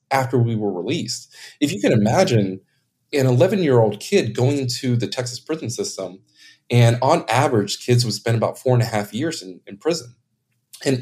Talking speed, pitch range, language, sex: 190 wpm, 115-140 Hz, English, male